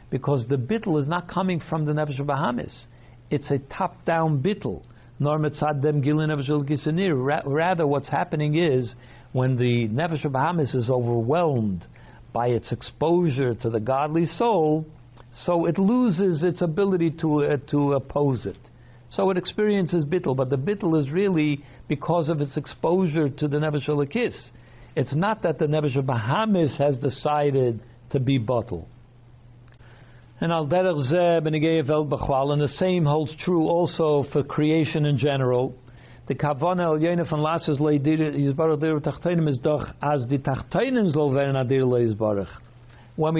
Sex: male